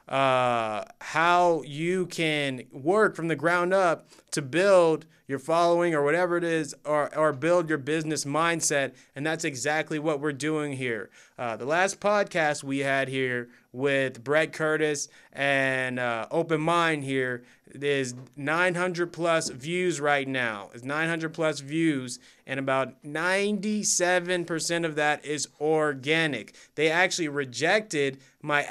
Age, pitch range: 30-49, 140-175 Hz